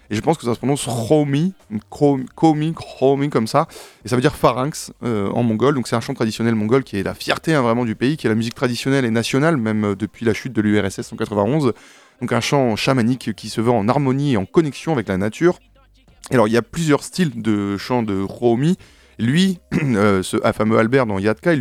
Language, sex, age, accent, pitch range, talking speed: French, male, 20-39, French, 105-140 Hz, 235 wpm